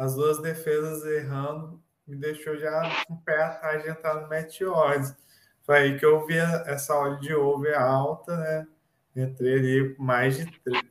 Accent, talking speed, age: Brazilian, 170 wpm, 20-39